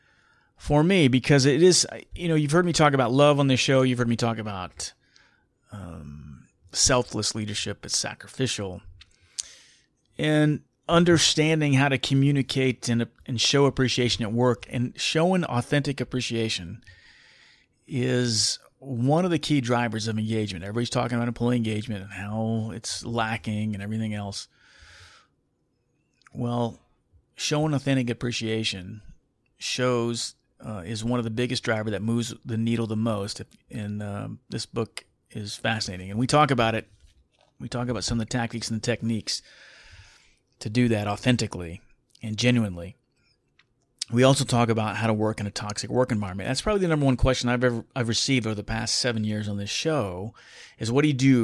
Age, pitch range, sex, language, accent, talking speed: 40-59, 110-130 Hz, male, English, American, 165 wpm